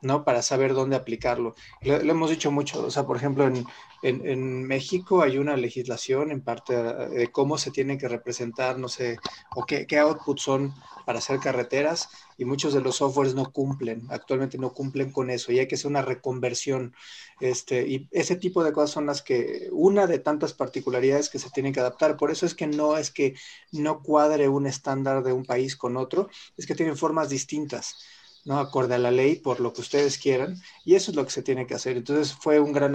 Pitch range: 130-145 Hz